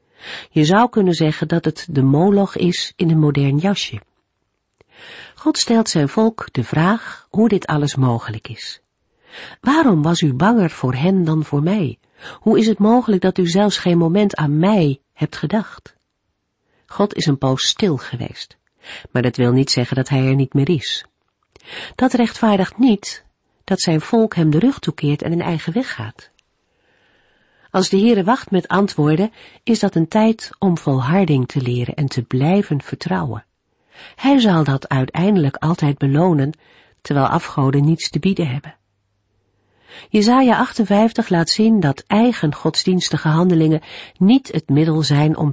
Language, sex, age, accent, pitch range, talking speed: Dutch, female, 50-69, Dutch, 135-195 Hz, 160 wpm